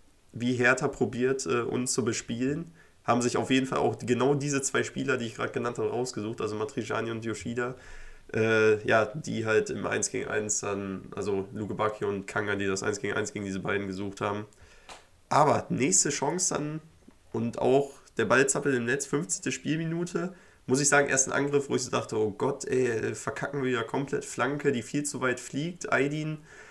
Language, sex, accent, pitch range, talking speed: German, male, German, 100-135 Hz, 195 wpm